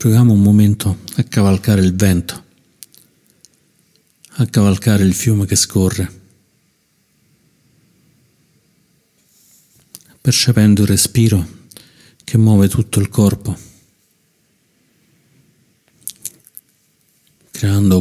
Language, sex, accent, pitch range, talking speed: Italian, male, native, 95-110 Hz, 75 wpm